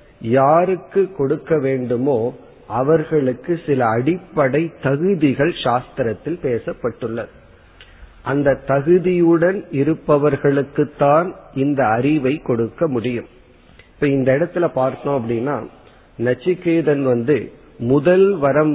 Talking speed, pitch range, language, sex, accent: 85 wpm, 125-160 Hz, Tamil, male, native